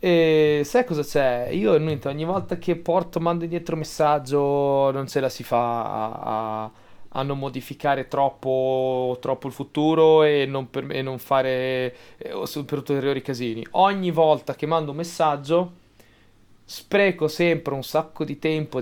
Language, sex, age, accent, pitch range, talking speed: Italian, male, 30-49, native, 135-170 Hz, 155 wpm